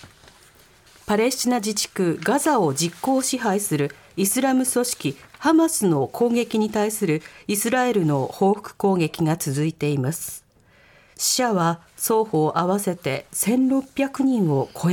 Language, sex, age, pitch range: Japanese, female, 40-59, 170-255 Hz